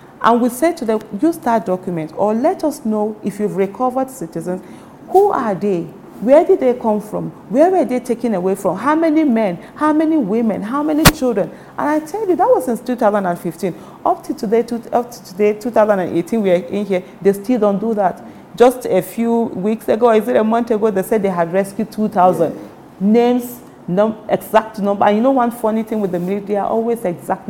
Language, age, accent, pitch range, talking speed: English, 40-59, Nigerian, 190-245 Hz, 205 wpm